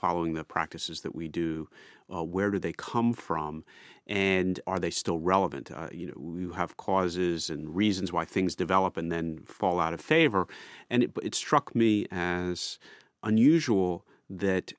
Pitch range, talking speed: 85-100 Hz, 170 wpm